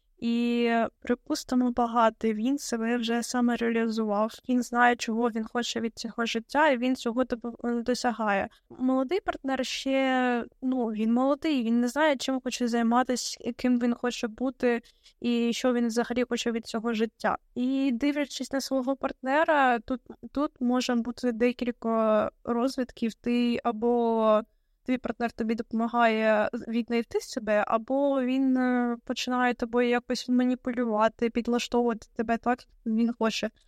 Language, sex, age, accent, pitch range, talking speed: Ukrainian, female, 10-29, native, 235-260 Hz, 135 wpm